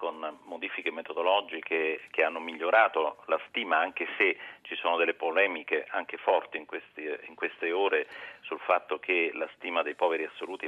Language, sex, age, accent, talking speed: Italian, male, 40-59, native, 165 wpm